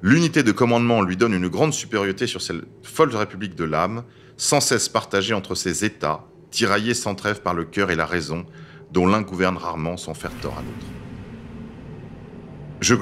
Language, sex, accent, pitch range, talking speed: French, male, French, 90-125 Hz, 180 wpm